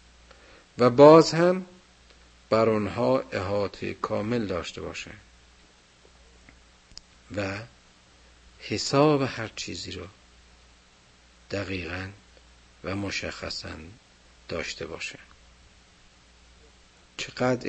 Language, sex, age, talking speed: Persian, male, 50-69, 70 wpm